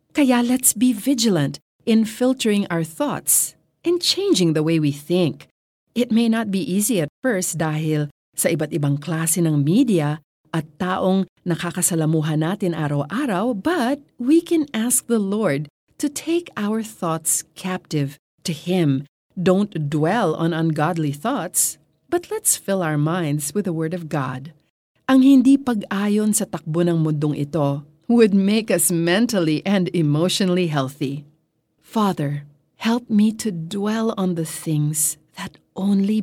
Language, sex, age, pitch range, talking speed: Filipino, female, 40-59, 155-210 Hz, 140 wpm